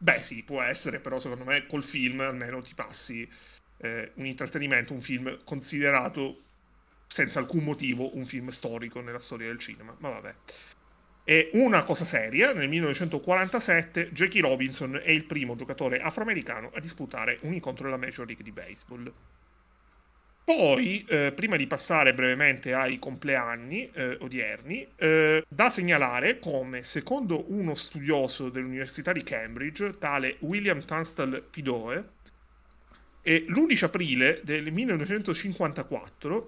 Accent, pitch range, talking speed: native, 130-175 Hz, 130 wpm